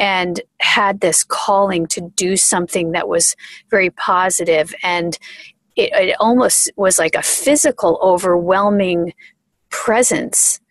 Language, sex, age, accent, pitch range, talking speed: English, female, 30-49, American, 180-215 Hz, 120 wpm